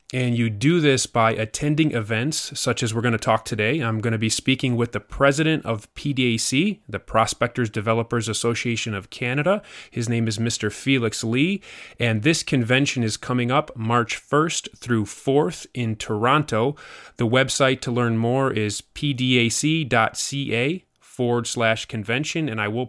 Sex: male